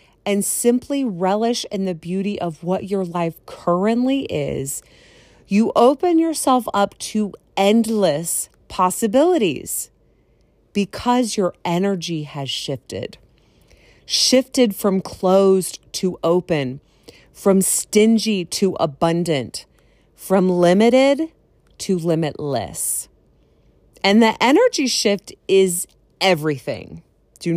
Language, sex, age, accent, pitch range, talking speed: English, female, 30-49, American, 175-240 Hz, 95 wpm